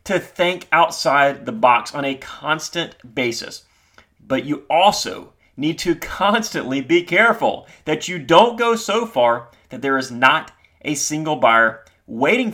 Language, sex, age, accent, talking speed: English, male, 30-49, American, 150 wpm